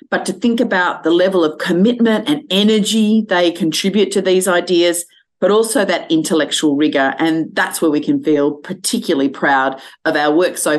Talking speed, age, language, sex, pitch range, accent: 180 wpm, 40-59, English, female, 165-225 Hz, Australian